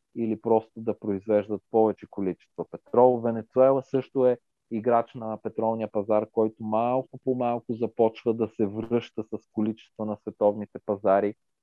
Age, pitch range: 40-59, 100-120 Hz